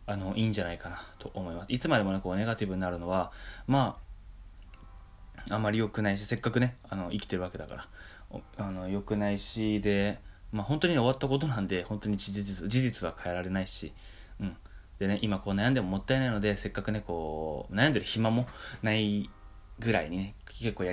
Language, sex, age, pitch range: Japanese, male, 20-39, 90-110 Hz